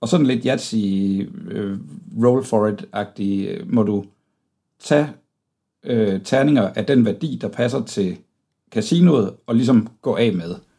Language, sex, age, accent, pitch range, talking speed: Danish, male, 60-79, native, 105-125 Hz, 145 wpm